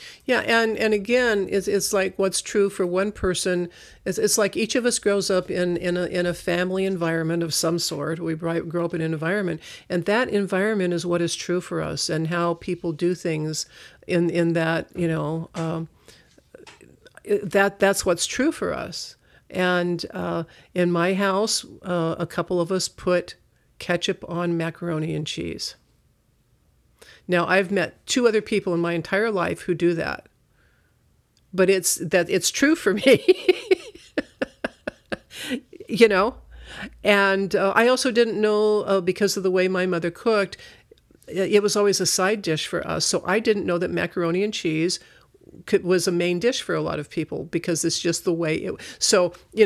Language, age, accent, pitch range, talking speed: English, 50-69, American, 170-205 Hz, 180 wpm